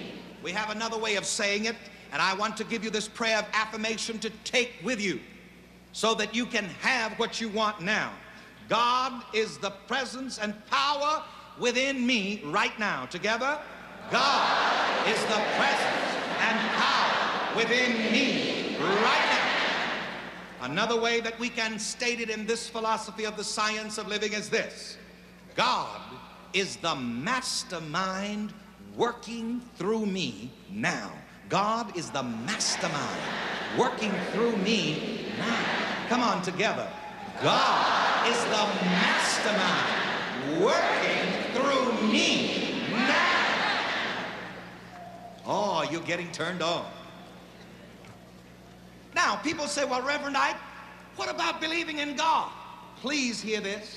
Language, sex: English, male